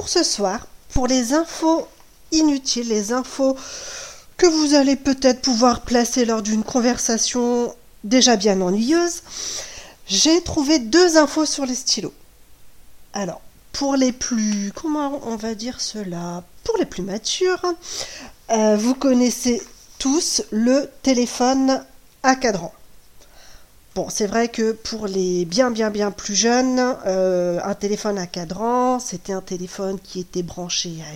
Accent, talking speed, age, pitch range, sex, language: French, 140 wpm, 40-59, 210-280 Hz, female, French